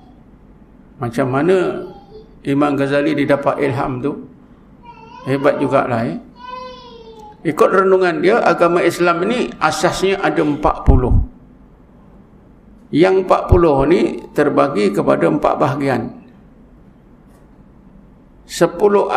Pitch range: 140-195 Hz